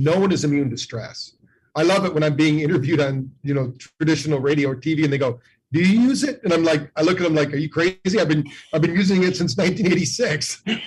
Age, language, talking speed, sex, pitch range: 50-69, English, 255 wpm, male, 135-165 Hz